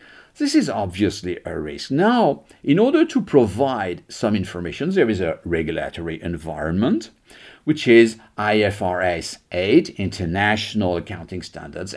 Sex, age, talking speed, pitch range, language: male, 50-69, 120 wpm, 95-145 Hz, English